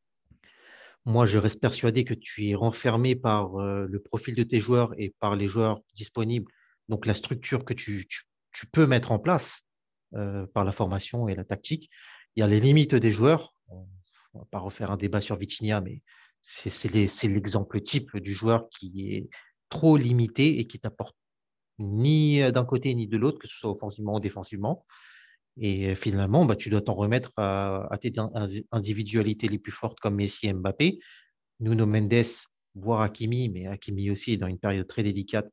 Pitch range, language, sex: 100-125 Hz, French, male